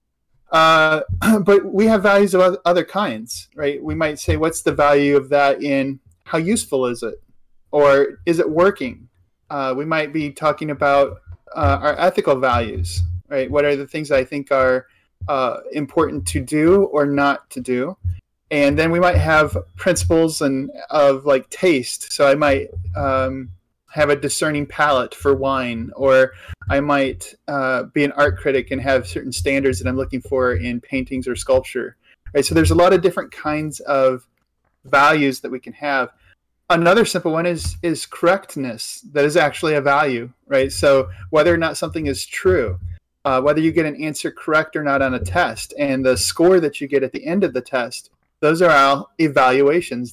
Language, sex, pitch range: English, male, 130-155 Hz